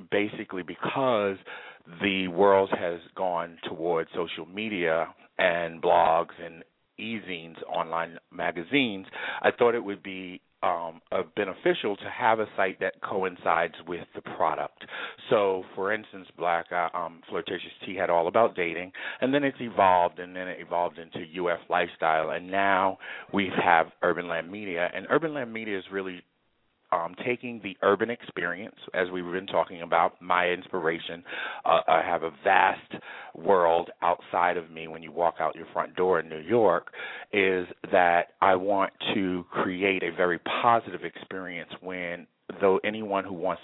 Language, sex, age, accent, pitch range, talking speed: English, male, 40-59, American, 85-100 Hz, 160 wpm